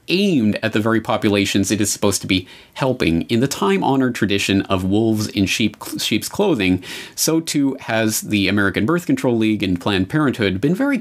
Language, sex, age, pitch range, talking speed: English, male, 30-49, 100-150 Hz, 180 wpm